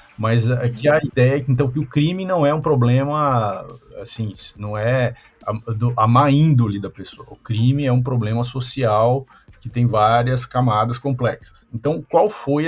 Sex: male